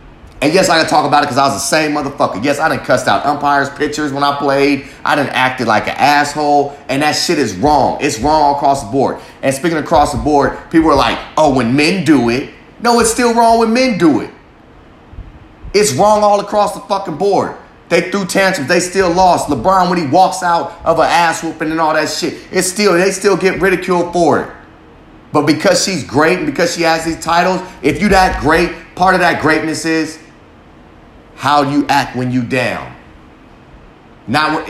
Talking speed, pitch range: 210 wpm, 140-170 Hz